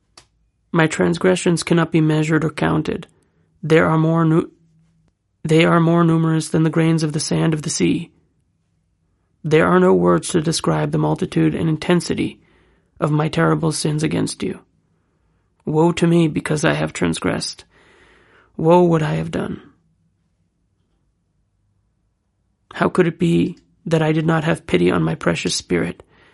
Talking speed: 150 wpm